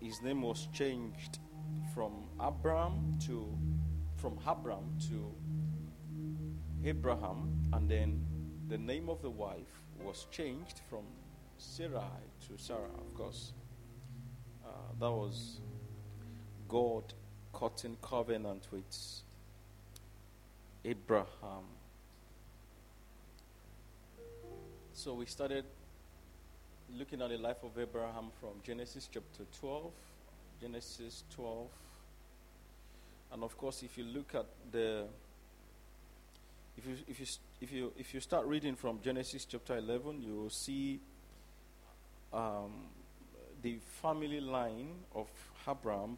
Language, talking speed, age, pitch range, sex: English, 100 wpm, 50-69, 85-125 Hz, male